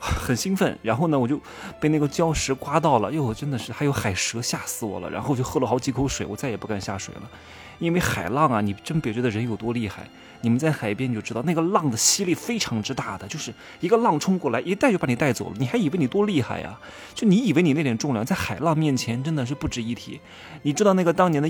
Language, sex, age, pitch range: Chinese, male, 20-39, 110-160 Hz